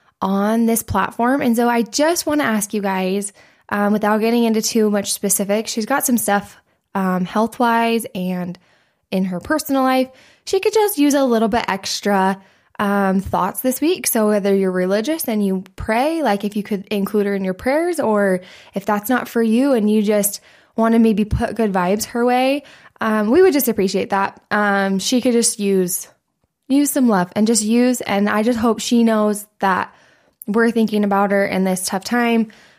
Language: English